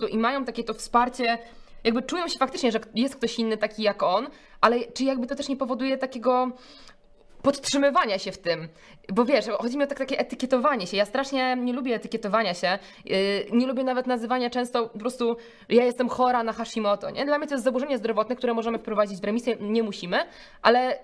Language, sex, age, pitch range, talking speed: Polish, female, 20-39, 205-260 Hz, 200 wpm